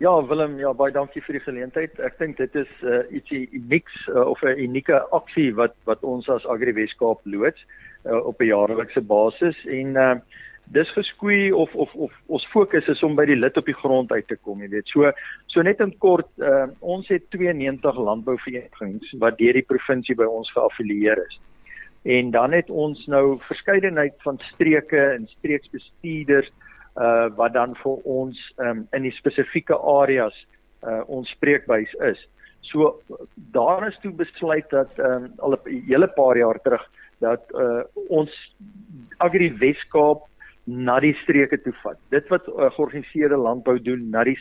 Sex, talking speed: male, 175 wpm